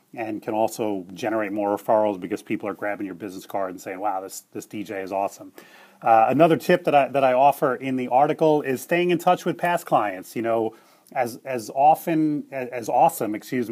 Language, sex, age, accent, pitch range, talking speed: English, male, 30-49, American, 110-135 Hz, 205 wpm